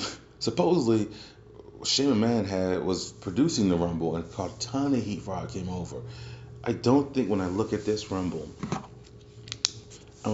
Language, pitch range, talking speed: English, 95-110 Hz, 155 wpm